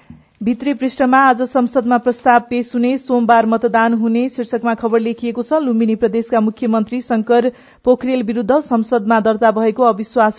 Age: 40-59